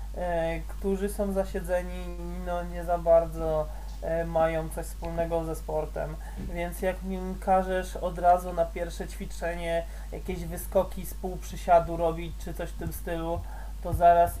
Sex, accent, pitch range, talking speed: male, native, 155-175 Hz, 140 wpm